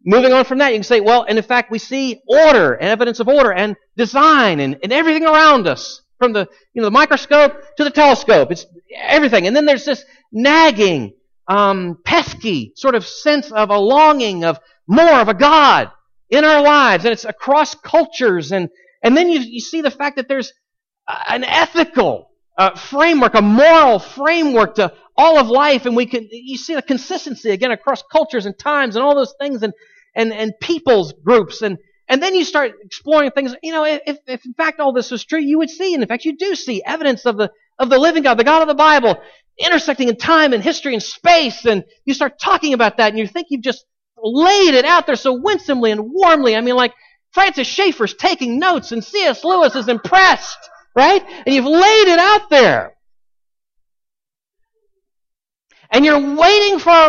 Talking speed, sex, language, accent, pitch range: 200 wpm, male, English, American, 230-315 Hz